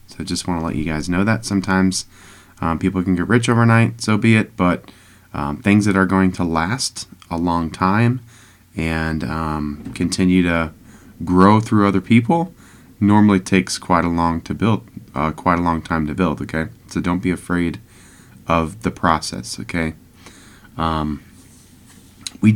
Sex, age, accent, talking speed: male, 30-49, American, 170 wpm